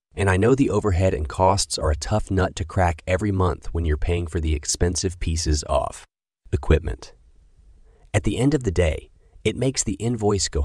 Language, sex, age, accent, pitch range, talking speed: English, male, 30-49, American, 80-105 Hz, 195 wpm